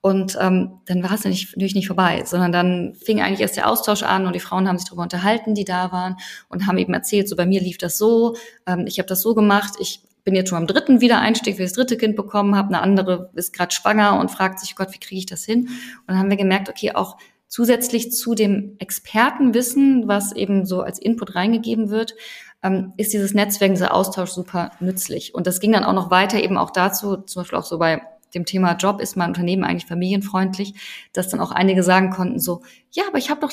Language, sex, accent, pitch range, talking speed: German, female, German, 185-225 Hz, 235 wpm